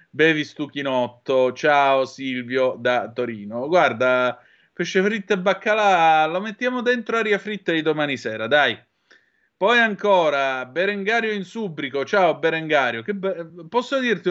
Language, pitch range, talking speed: Italian, 120-160 Hz, 130 wpm